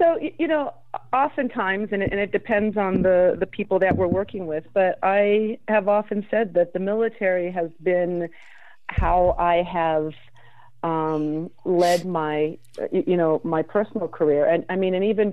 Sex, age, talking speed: female, 40-59, 165 wpm